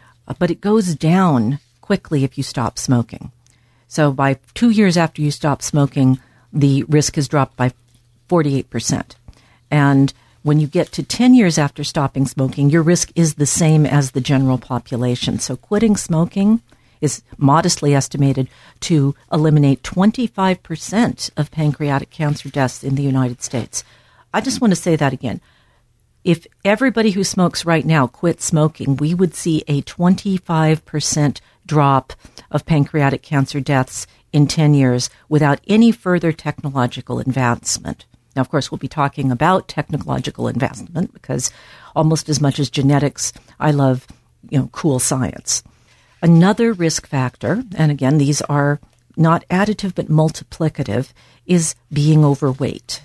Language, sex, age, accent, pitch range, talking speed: English, female, 50-69, American, 130-165 Hz, 145 wpm